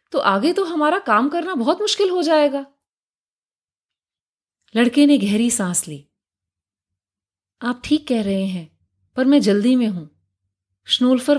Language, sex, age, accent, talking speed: Hindi, female, 30-49, native, 135 wpm